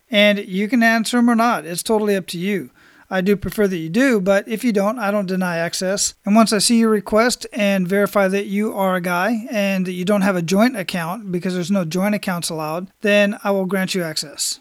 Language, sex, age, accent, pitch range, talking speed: English, male, 40-59, American, 185-220 Hz, 240 wpm